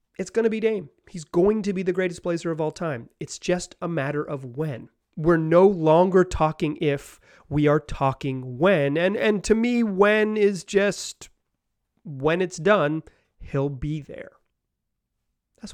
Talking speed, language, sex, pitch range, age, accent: 170 wpm, English, male, 140-210 Hz, 30-49, American